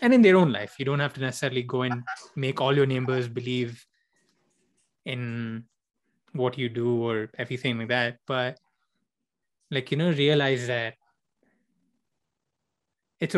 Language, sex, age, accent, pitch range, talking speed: English, male, 20-39, Indian, 125-145 Hz, 145 wpm